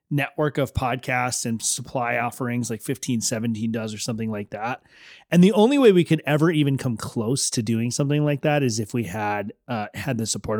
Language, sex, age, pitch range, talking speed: English, male, 30-49, 120-150 Hz, 210 wpm